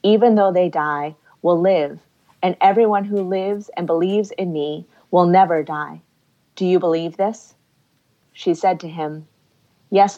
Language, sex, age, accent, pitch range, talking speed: English, female, 30-49, American, 160-195 Hz, 155 wpm